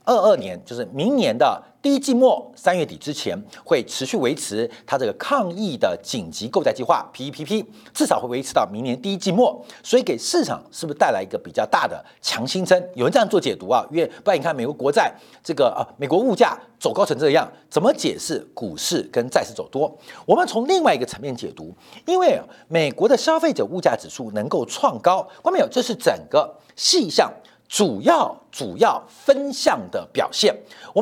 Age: 50-69